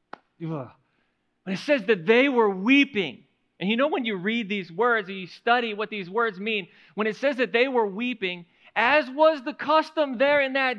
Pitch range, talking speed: 175-270 Hz, 200 wpm